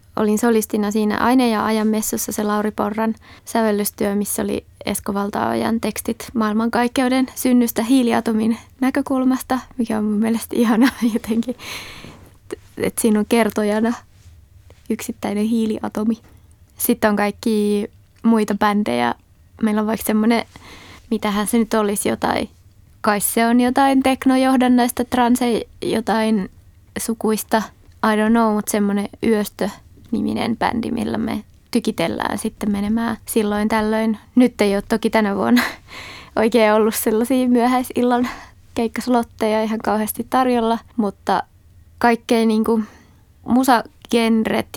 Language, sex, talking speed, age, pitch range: Finnish, female, 115 wpm, 20-39, 210-235 Hz